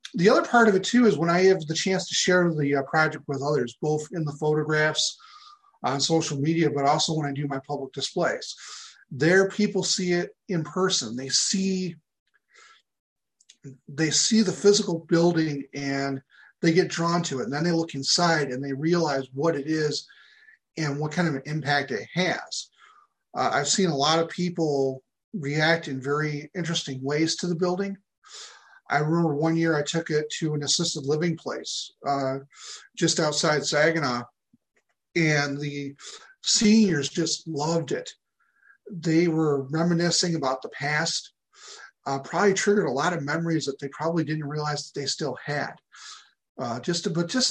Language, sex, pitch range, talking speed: English, male, 145-180 Hz, 170 wpm